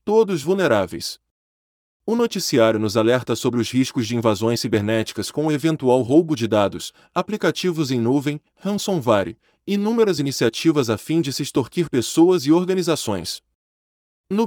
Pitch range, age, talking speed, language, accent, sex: 115-170 Hz, 20-39, 140 wpm, Portuguese, Brazilian, male